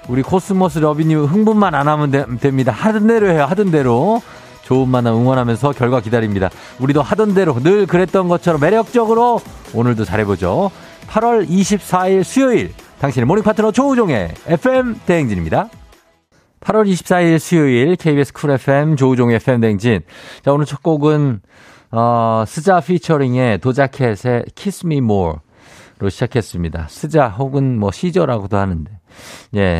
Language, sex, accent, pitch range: Korean, male, native, 105-160 Hz